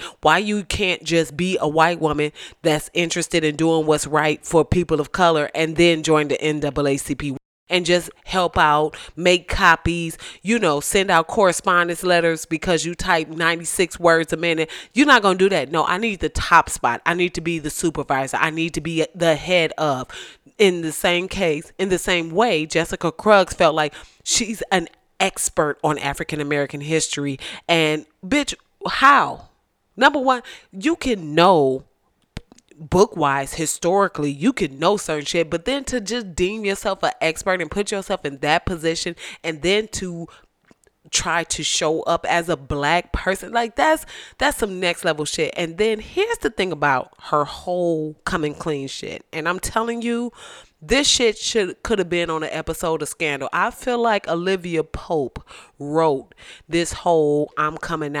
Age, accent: 30-49, American